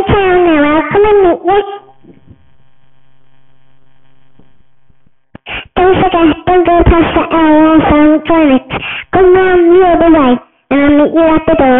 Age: 40-59